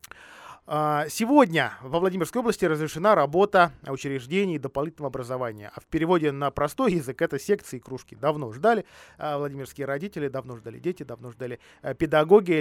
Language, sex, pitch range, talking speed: Russian, male, 135-180 Hz, 140 wpm